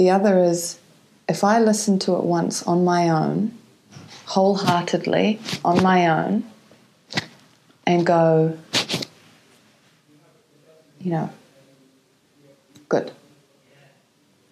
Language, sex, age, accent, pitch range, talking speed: English, female, 30-49, Australian, 170-210 Hz, 85 wpm